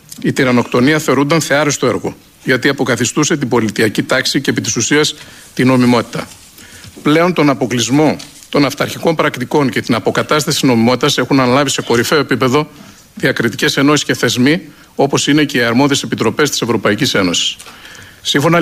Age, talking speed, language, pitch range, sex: 50-69, 150 wpm, Greek, 125-150 Hz, male